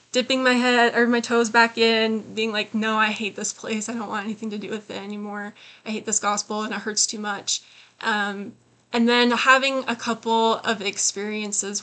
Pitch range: 205-230 Hz